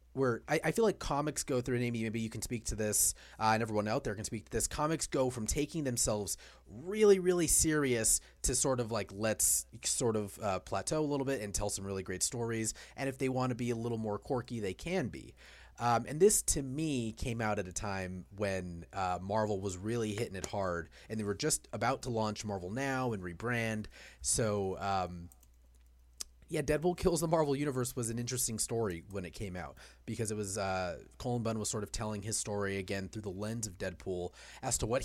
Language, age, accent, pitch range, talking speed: English, 30-49, American, 100-135 Hz, 225 wpm